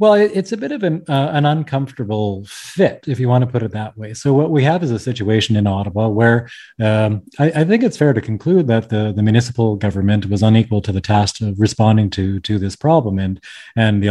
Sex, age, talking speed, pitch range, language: male, 30-49, 235 wpm, 105-125 Hz, English